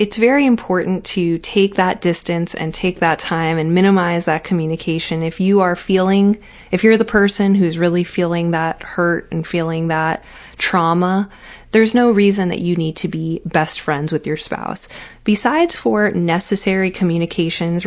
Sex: female